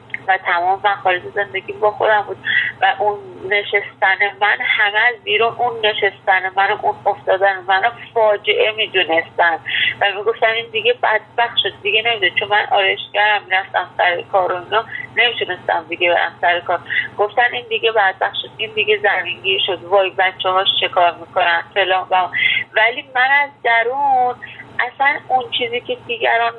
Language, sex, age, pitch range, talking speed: Persian, female, 30-49, 190-255 Hz, 150 wpm